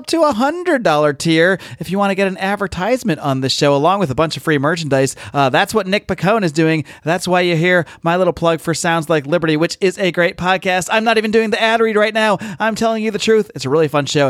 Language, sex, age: English, male, 30-49